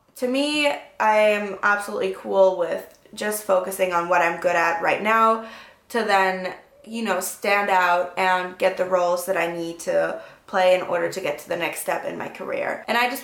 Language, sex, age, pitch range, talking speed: English, female, 20-39, 185-210 Hz, 205 wpm